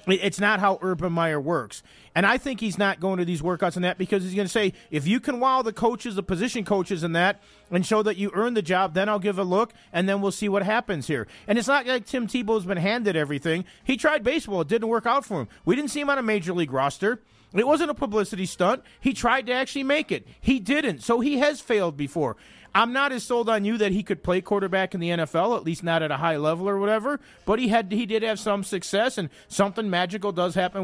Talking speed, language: 260 wpm, English